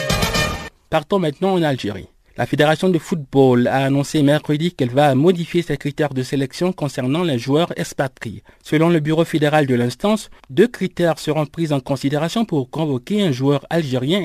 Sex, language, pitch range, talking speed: male, French, 135-180 Hz, 165 wpm